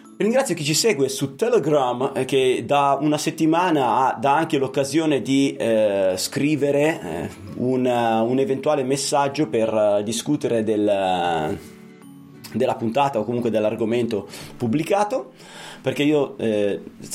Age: 20-39